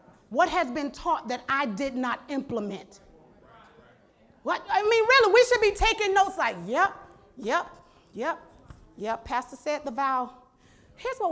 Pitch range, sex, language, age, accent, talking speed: 220-310 Hz, female, English, 40-59, American, 155 wpm